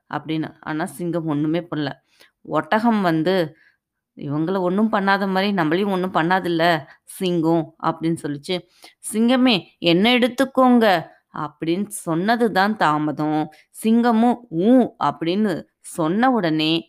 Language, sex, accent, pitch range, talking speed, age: Tamil, female, native, 160-215 Hz, 105 wpm, 20-39